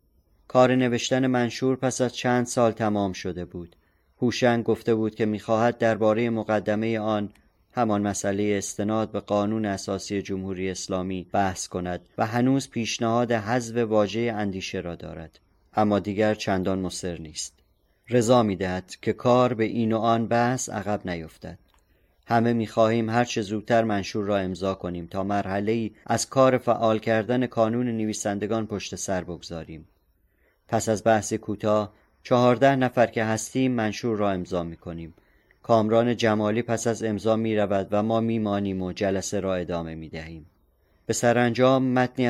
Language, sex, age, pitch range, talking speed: Persian, male, 30-49, 95-115 Hz, 150 wpm